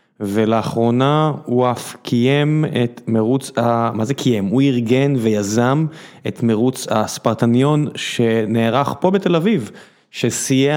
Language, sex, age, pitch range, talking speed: Hebrew, male, 30-49, 115-140 Hz, 115 wpm